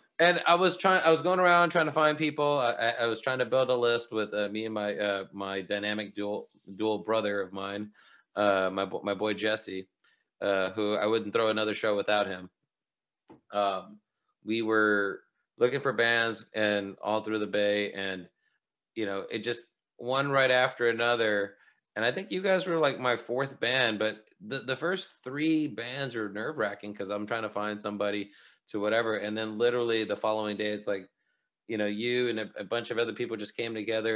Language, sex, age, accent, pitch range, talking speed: English, male, 30-49, American, 105-155 Hz, 205 wpm